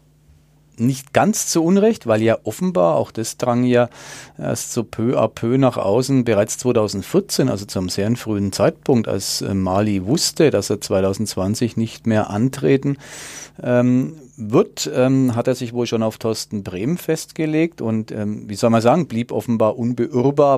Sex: male